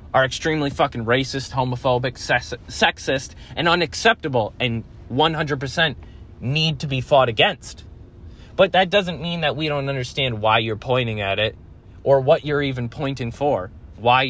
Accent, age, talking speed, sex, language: American, 20-39, 145 wpm, male, English